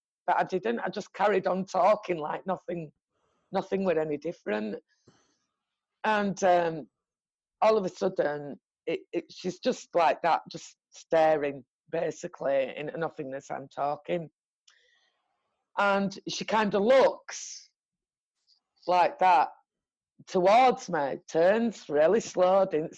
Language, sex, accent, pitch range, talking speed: English, female, British, 160-195 Hz, 110 wpm